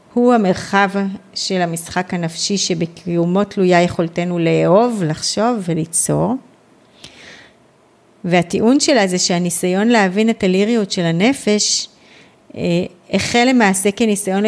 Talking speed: 100 wpm